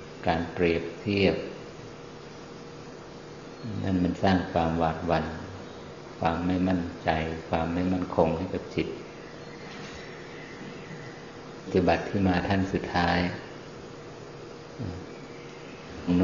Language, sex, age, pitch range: Thai, male, 50-69, 85-95 Hz